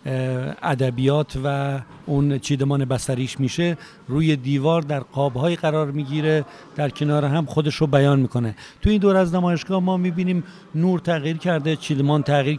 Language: Persian